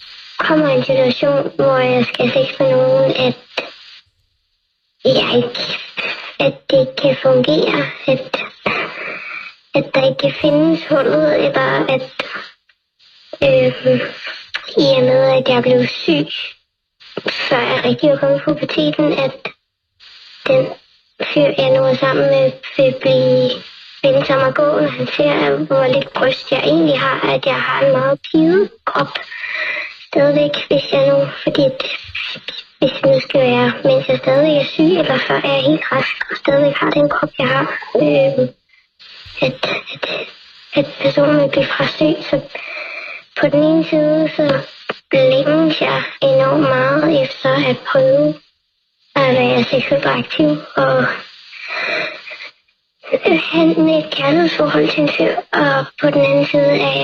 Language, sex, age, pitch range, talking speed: Danish, male, 20-39, 250-290 Hz, 145 wpm